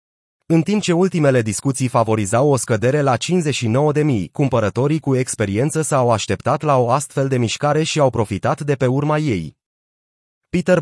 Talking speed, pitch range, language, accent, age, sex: 165 wpm, 115-150 Hz, Romanian, native, 30-49, male